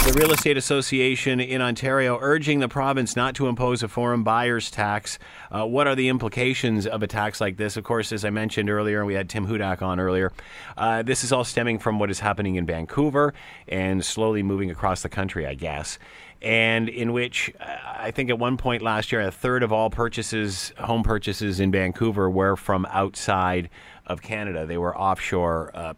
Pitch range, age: 95-115 Hz, 40-59